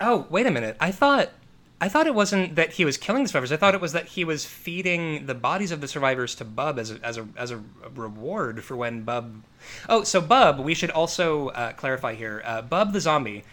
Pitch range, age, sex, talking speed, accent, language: 125-175 Hz, 20-39, male, 240 wpm, American, English